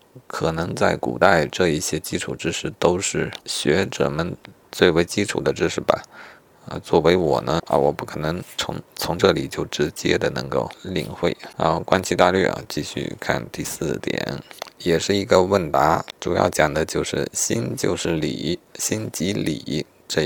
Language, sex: Chinese, male